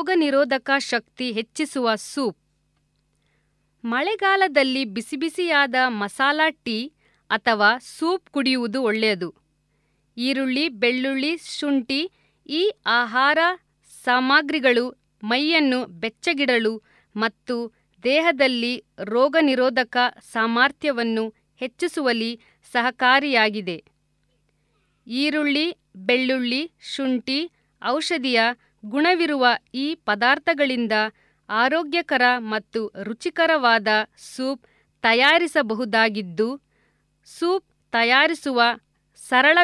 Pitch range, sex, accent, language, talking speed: 230-295 Hz, female, native, Kannada, 65 wpm